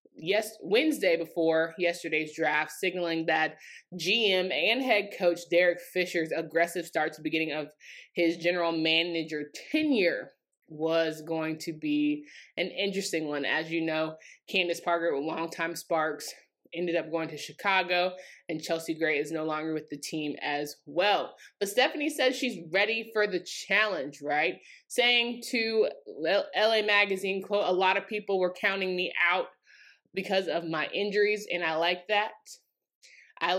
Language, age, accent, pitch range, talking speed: English, 20-39, American, 165-210 Hz, 150 wpm